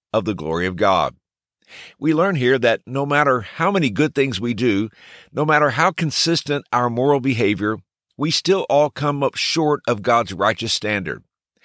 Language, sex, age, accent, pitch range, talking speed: English, male, 50-69, American, 105-150 Hz, 175 wpm